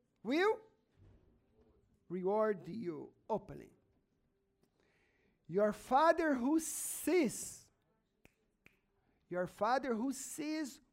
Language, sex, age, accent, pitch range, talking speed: English, male, 50-69, Brazilian, 185-280 Hz, 65 wpm